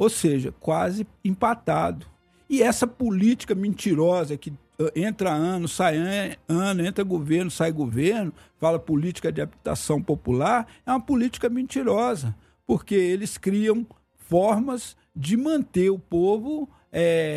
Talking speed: 120 wpm